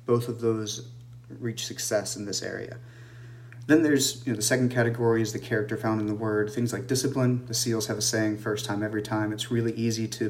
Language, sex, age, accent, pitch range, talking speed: English, male, 30-49, American, 110-120 Hz, 220 wpm